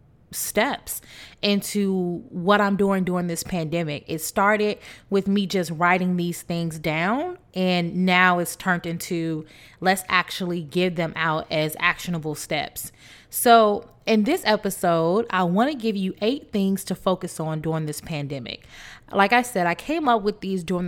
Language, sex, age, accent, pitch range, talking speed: English, female, 20-39, American, 165-190 Hz, 160 wpm